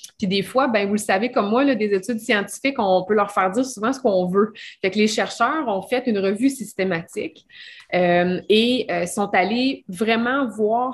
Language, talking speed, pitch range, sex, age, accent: French, 210 wpm, 190-235 Hz, female, 20-39, Canadian